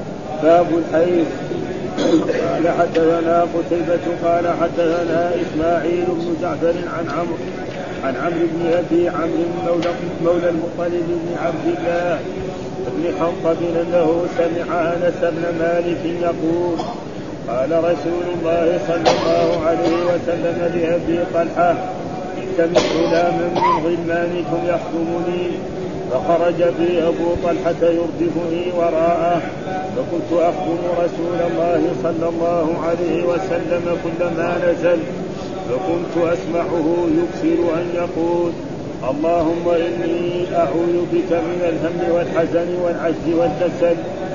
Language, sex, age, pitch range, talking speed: Arabic, male, 40-59, 170-175 Hz, 100 wpm